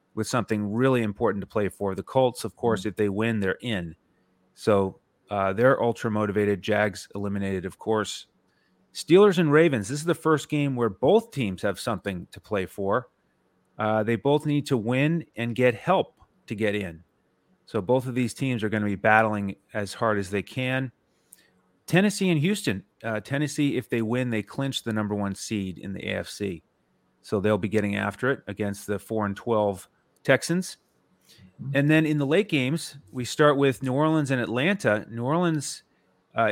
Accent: American